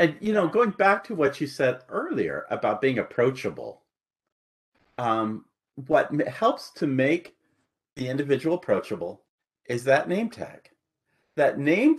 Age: 40-59